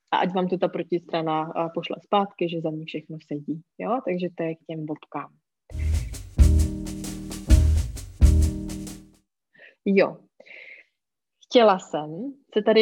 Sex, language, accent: female, Czech, native